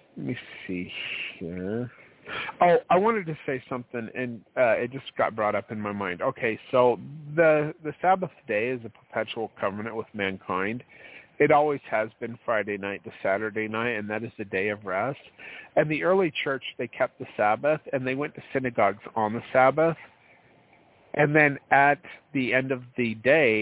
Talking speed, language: 185 wpm, English